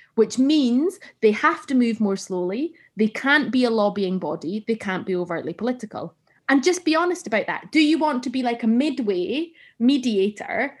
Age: 20-39